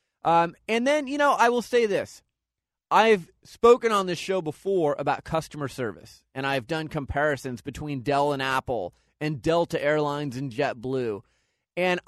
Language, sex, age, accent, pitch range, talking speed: English, male, 30-49, American, 140-180 Hz, 160 wpm